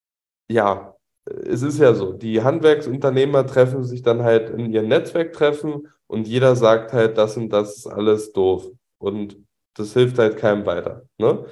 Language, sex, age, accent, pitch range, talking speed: German, male, 10-29, German, 110-130 Hz, 160 wpm